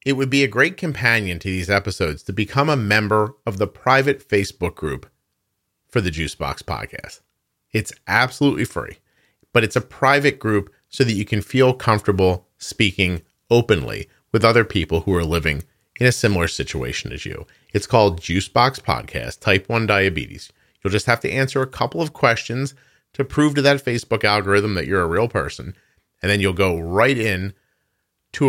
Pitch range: 95-135 Hz